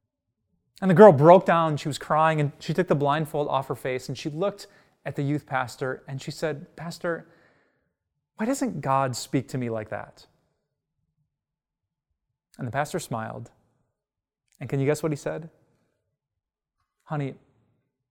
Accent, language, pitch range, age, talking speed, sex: American, English, 125-165 Hz, 20-39, 160 wpm, male